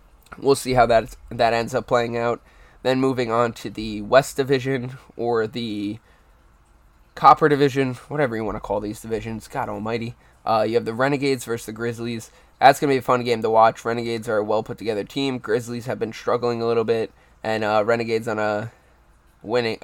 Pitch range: 110-125 Hz